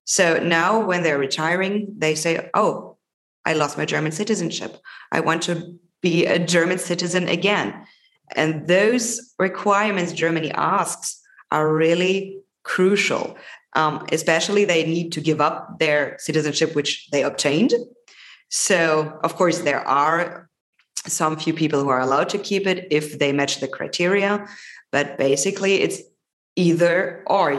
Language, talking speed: English, 140 wpm